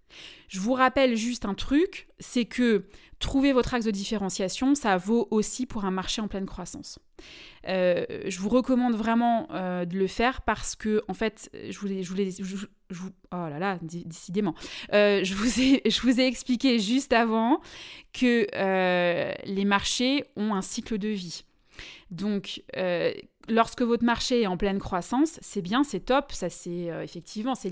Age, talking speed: 20-39, 170 wpm